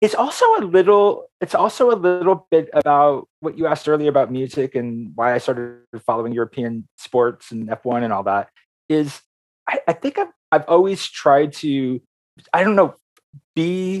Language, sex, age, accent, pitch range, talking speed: English, male, 30-49, American, 100-145 Hz, 175 wpm